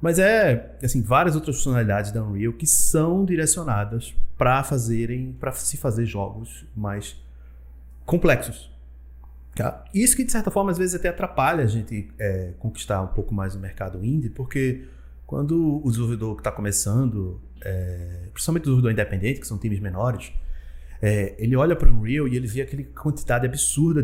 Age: 30-49